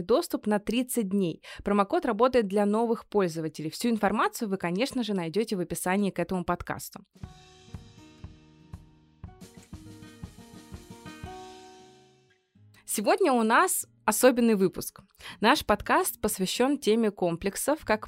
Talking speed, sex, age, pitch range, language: 105 wpm, female, 20-39, 185-240 Hz, Russian